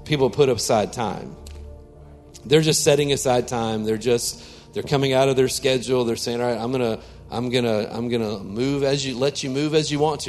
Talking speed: 235 wpm